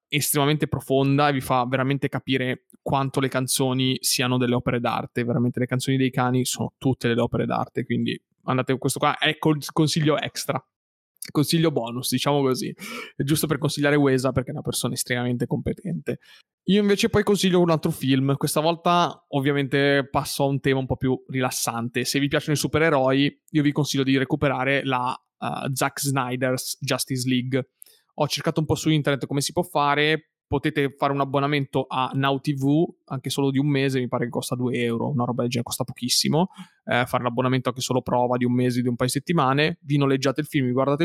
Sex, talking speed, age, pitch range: male, 195 wpm, 20-39, 130-150 Hz